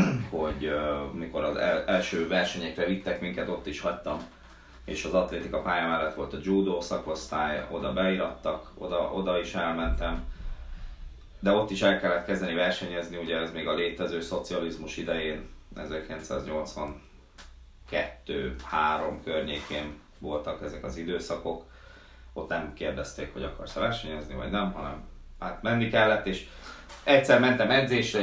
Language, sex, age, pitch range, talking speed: Hungarian, male, 30-49, 70-95 Hz, 135 wpm